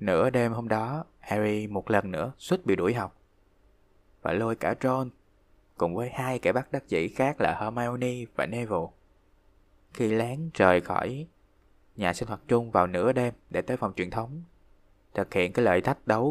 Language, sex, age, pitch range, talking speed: Vietnamese, male, 20-39, 100-120 Hz, 185 wpm